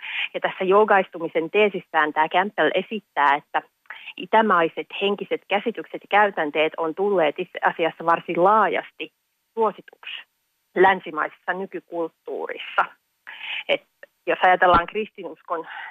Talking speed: 95 wpm